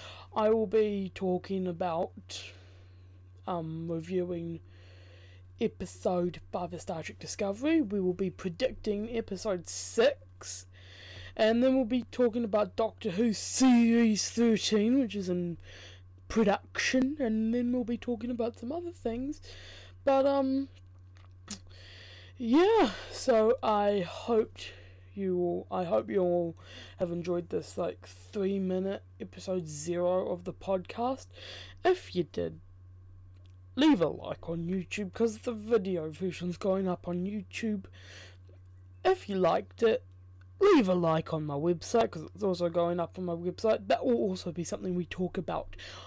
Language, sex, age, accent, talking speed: English, female, 20-39, British, 140 wpm